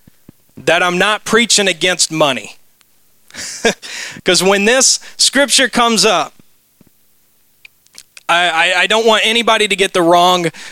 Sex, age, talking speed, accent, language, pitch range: male, 30-49, 125 wpm, American, English, 150-195 Hz